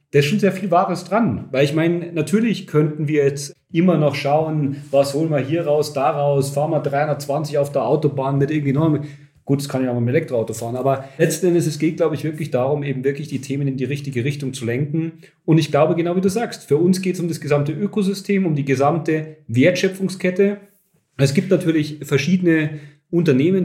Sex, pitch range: male, 135-165 Hz